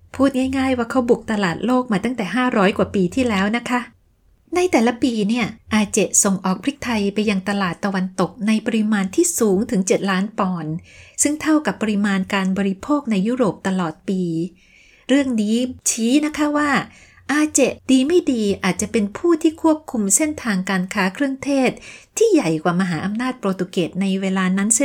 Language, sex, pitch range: Thai, female, 195-255 Hz